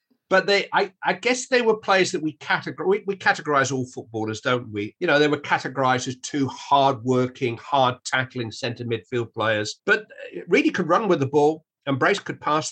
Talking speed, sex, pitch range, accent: 200 wpm, male, 120-150 Hz, British